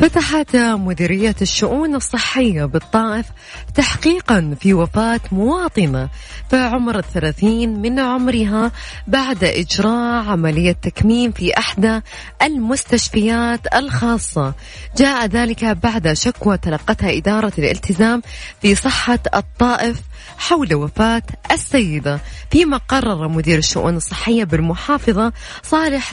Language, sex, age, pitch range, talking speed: Arabic, female, 20-39, 185-245 Hz, 95 wpm